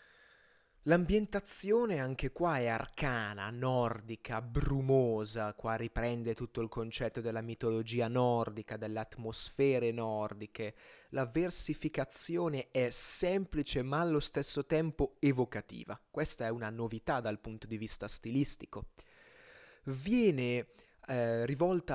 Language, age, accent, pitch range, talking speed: Italian, 20-39, native, 115-145 Hz, 105 wpm